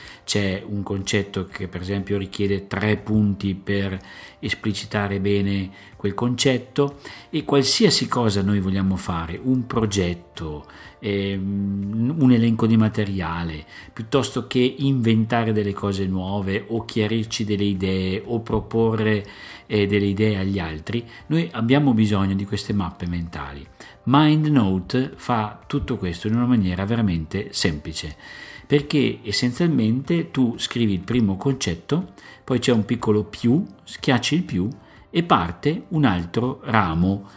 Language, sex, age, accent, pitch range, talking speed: Italian, male, 50-69, native, 95-120 Hz, 130 wpm